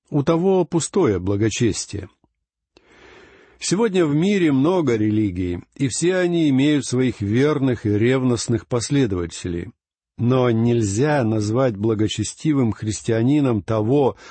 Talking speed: 100 wpm